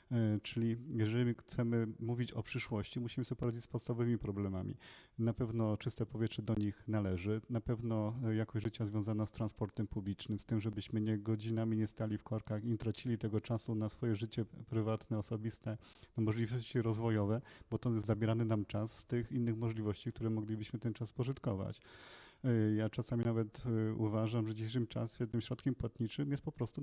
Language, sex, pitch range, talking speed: Polish, male, 110-120 Hz, 175 wpm